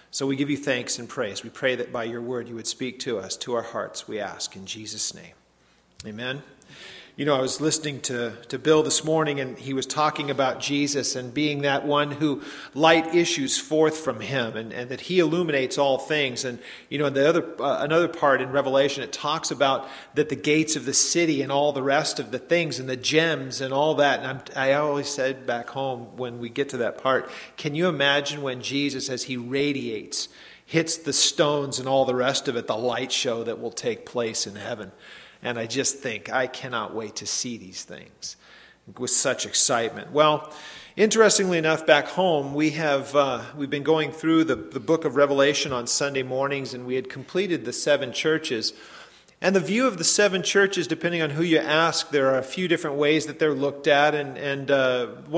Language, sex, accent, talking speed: English, male, American, 215 wpm